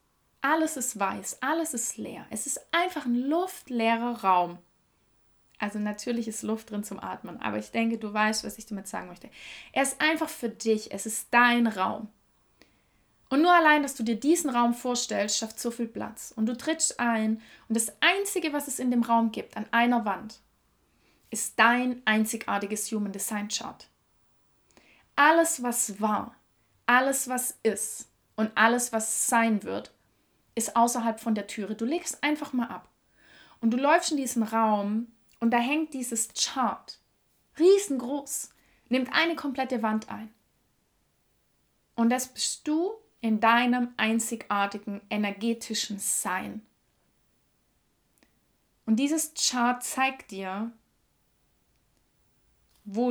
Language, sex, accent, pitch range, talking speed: German, female, German, 215-255 Hz, 140 wpm